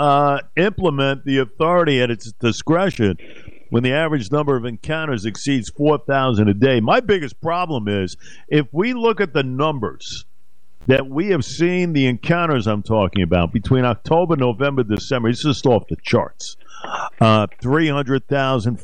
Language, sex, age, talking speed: English, male, 50-69, 150 wpm